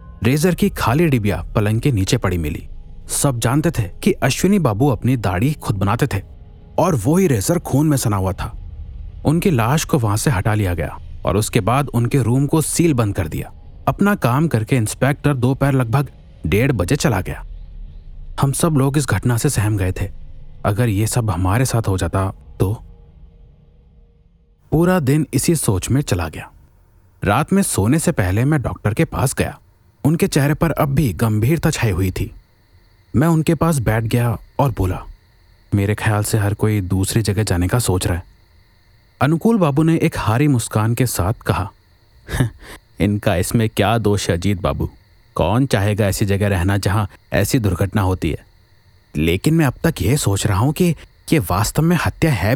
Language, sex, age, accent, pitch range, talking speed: Hindi, male, 40-59, native, 95-140 Hz, 180 wpm